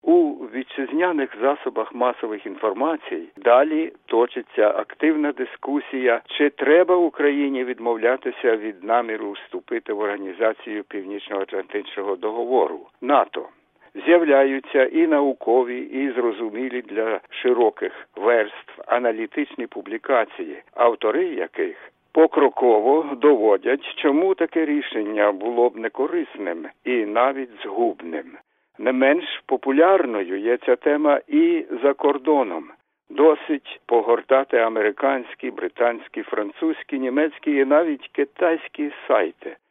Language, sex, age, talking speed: English, male, 60-79, 95 wpm